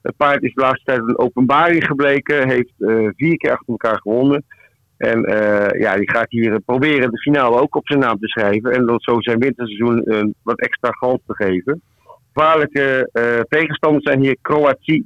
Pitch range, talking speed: 115-140 Hz, 190 wpm